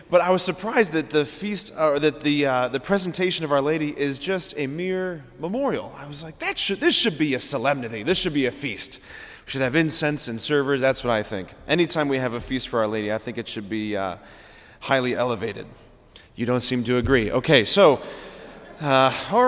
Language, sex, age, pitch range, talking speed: English, male, 30-49, 125-160 Hz, 220 wpm